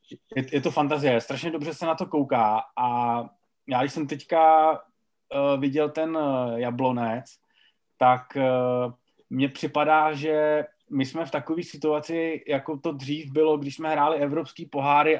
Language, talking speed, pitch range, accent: Czech, 140 wpm, 135-155 Hz, native